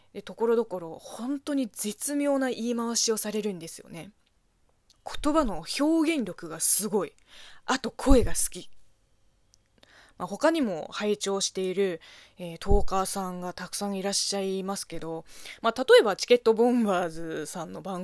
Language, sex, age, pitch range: Japanese, female, 20-39, 175-260 Hz